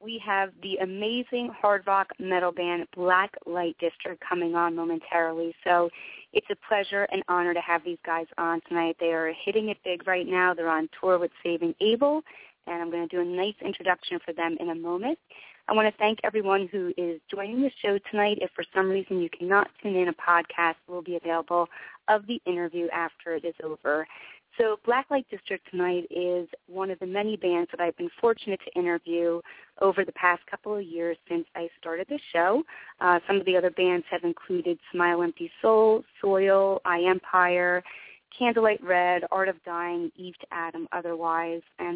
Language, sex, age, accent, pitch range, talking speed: English, female, 30-49, American, 170-200 Hz, 190 wpm